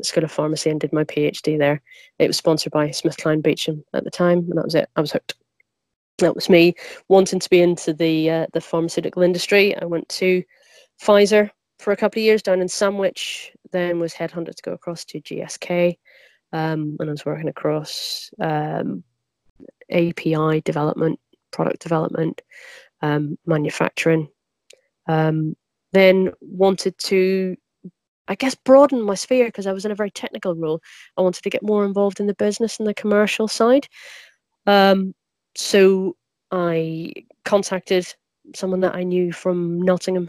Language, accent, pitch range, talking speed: English, British, 165-195 Hz, 165 wpm